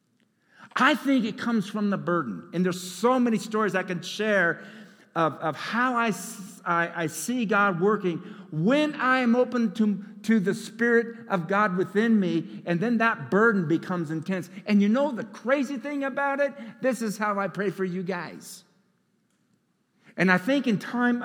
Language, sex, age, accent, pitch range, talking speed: English, male, 60-79, American, 175-220 Hz, 175 wpm